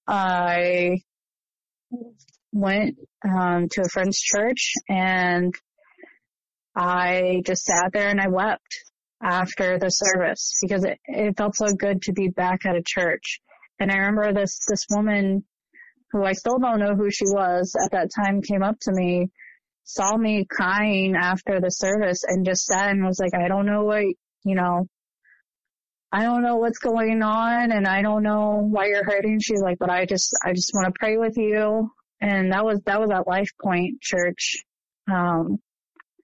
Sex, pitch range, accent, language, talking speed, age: female, 185-210 Hz, American, English, 170 wpm, 20-39